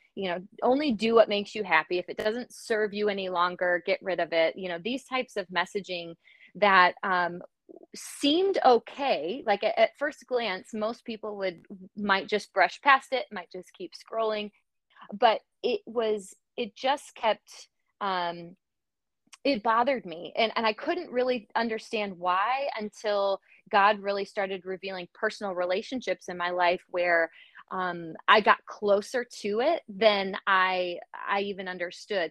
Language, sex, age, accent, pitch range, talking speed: English, female, 20-39, American, 180-220 Hz, 160 wpm